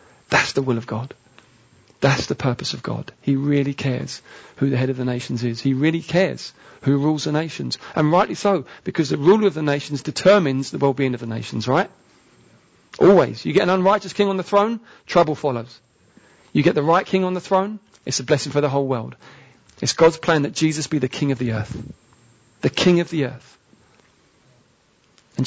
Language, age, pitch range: English, 40-59, 130-170 Hz